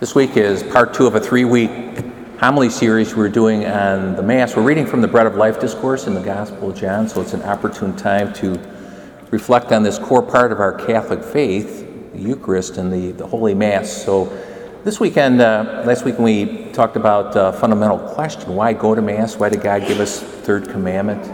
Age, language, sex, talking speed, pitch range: 50-69, English, male, 210 wpm, 100-125 Hz